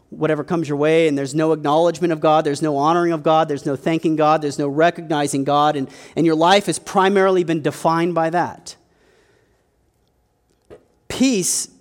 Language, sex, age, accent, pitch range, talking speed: English, male, 40-59, American, 135-180 Hz, 175 wpm